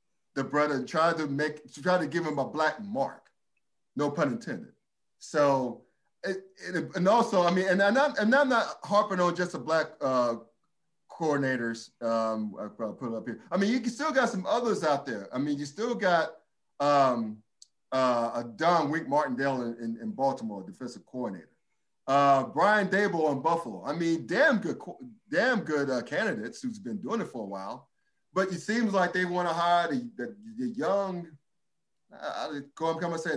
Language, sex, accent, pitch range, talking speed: English, male, American, 135-185 Hz, 190 wpm